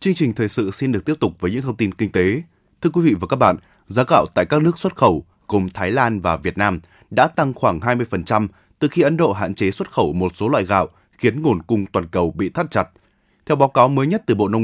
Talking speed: 265 wpm